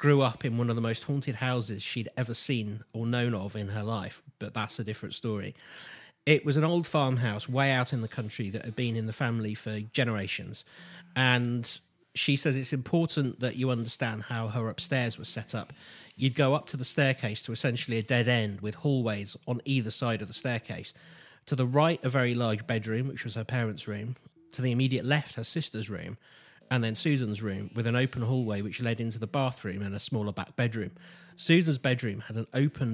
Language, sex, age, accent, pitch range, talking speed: English, male, 30-49, British, 110-135 Hz, 210 wpm